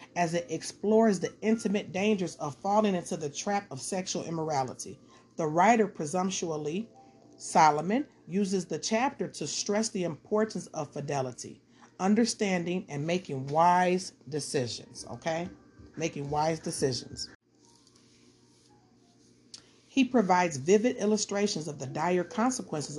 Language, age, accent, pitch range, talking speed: English, 40-59, American, 155-215 Hz, 115 wpm